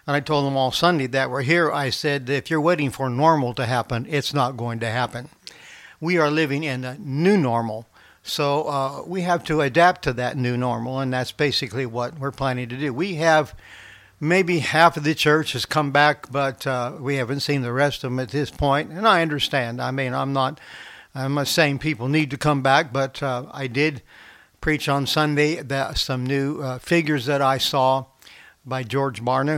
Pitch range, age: 130-150 Hz, 60-79